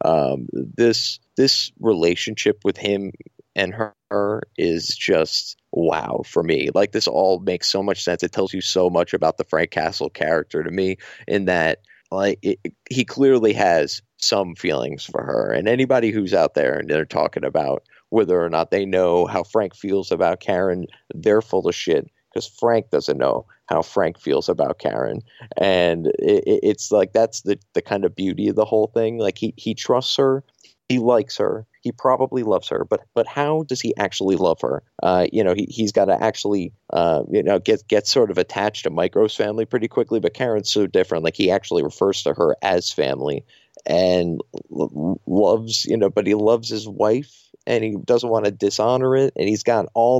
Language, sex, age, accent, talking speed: English, male, 30-49, American, 195 wpm